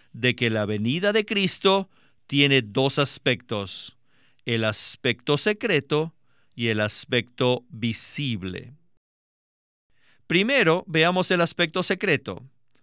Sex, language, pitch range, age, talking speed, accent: male, Spanish, 125-185 Hz, 50-69, 100 wpm, Mexican